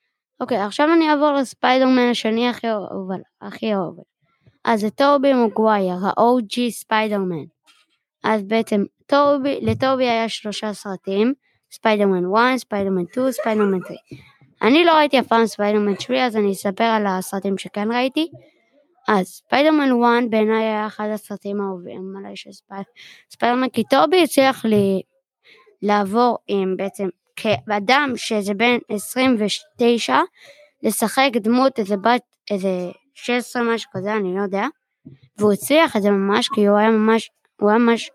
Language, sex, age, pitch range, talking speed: Hebrew, female, 20-39, 205-255 Hz, 130 wpm